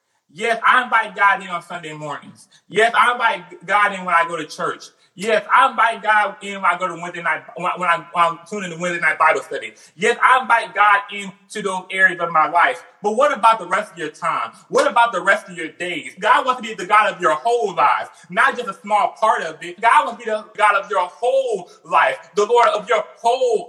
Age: 30-49